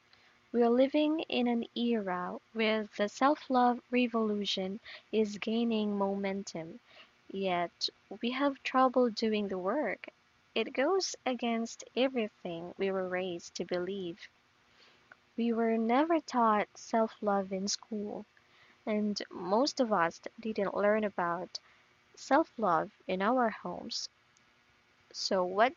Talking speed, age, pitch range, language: 115 wpm, 20-39, 195-245 Hz, English